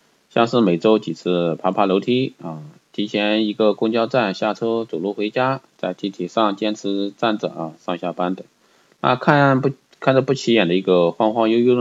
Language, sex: Chinese, male